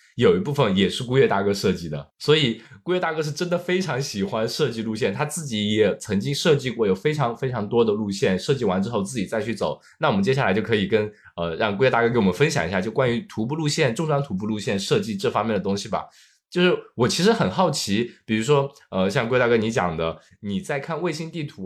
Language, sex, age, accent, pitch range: Chinese, male, 20-39, native, 110-160 Hz